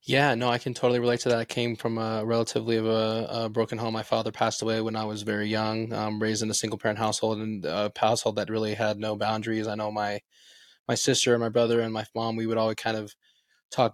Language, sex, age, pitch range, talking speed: English, male, 20-39, 110-120 Hz, 255 wpm